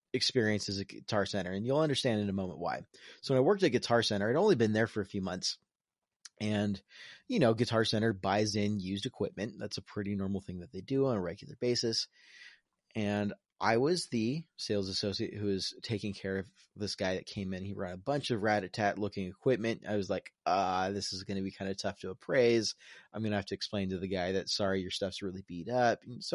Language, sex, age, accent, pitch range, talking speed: English, male, 30-49, American, 100-120 Hz, 235 wpm